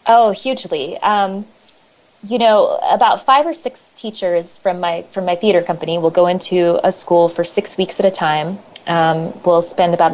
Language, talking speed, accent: English, 185 wpm, American